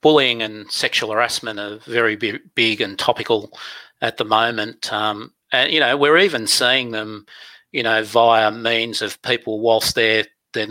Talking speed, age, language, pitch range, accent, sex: 165 wpm, 40-59, English, 110-130 Hz, Australian, male